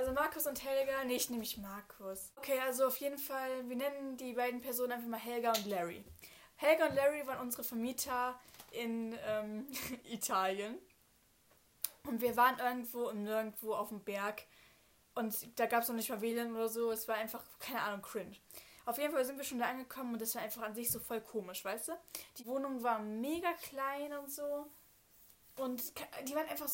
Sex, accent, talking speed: female, German, 195 wpm